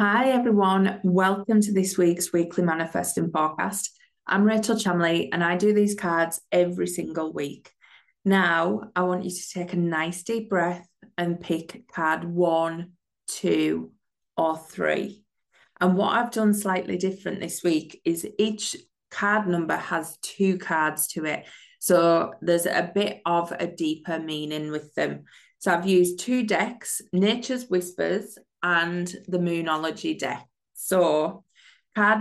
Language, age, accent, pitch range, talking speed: English, 20-39, British, 170-205 Hz, 145 wpm